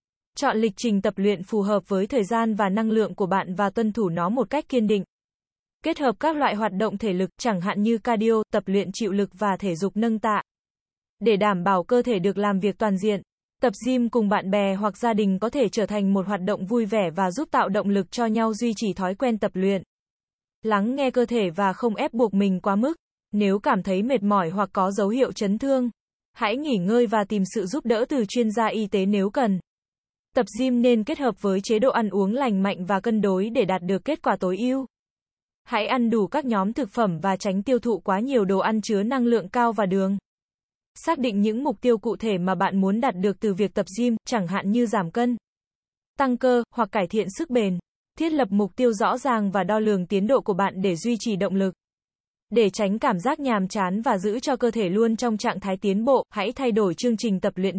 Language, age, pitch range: Vietnamese, 20-39, 200-240 Hz